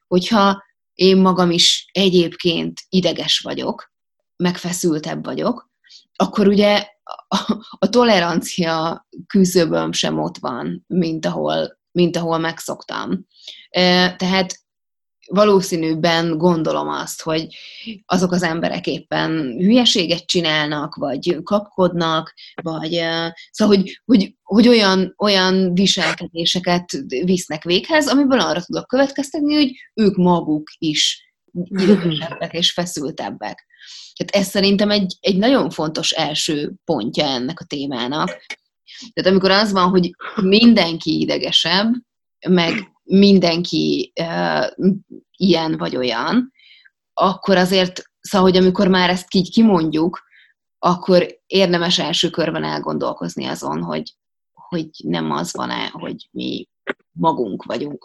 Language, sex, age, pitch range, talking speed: Hungarian, female, 20-39, 165-195 Hz, 110 wpm